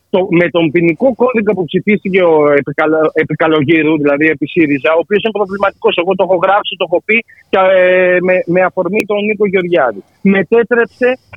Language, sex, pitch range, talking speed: Greek, male, 165-260 Hz, 175 wpm